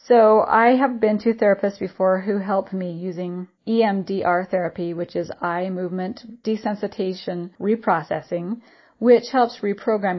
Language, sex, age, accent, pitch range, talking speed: English, female, 30-49, American, 180-225 Hz, 130 wpm